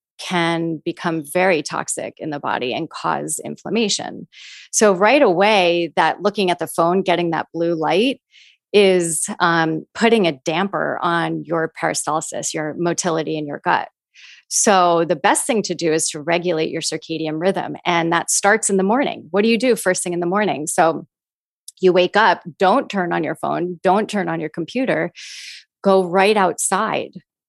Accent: American